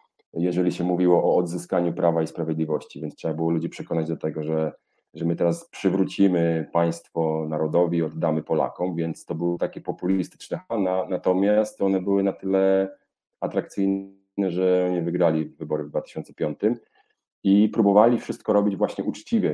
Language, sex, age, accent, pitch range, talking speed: Polish, male, 40-59, native, 80-95 Hz, 145 wpm